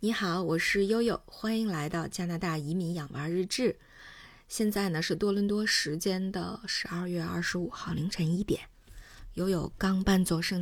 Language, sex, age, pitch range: Chinese, female, 20-39, 165-200 Hz